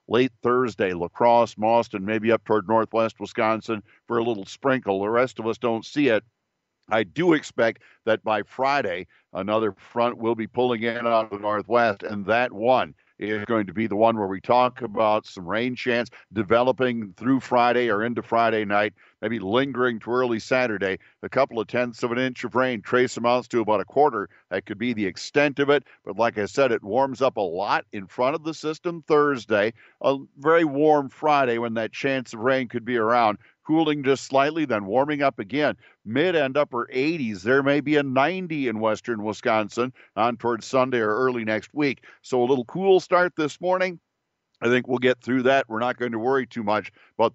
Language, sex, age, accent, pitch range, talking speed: English, male, 50-69, American, 110-130 Hz, 205 wpm